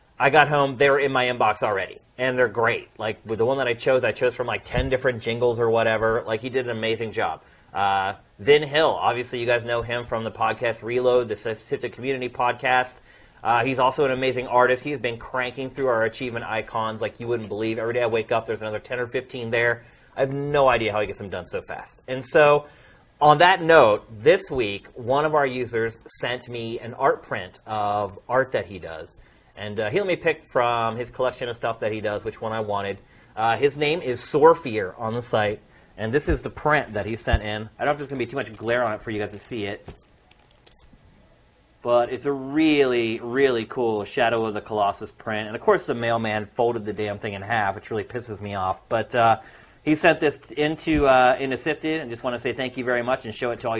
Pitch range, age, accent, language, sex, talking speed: 110-130 Hz, 30-49, American, English, male, 240 wpm